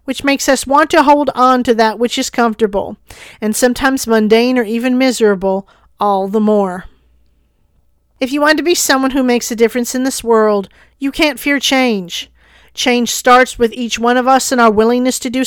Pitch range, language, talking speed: 210-270 Hz, English, 195 wpm